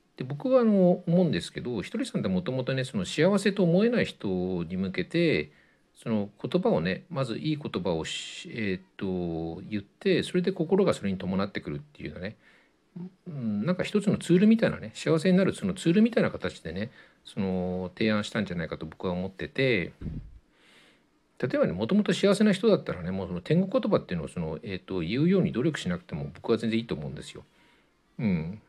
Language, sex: Japanese, male